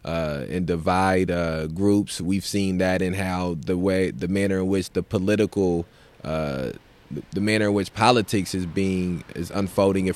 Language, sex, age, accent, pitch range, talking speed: English, male, 20-39, American, 85-100 Hz, 170 wpm